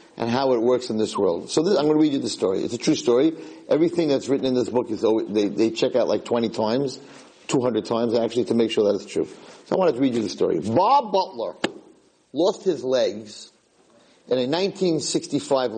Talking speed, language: 230 wpm, English